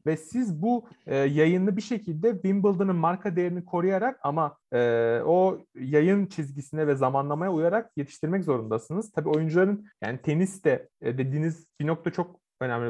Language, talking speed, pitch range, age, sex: Turkish, 150 wpm, 140-180 Hz, 30-49, male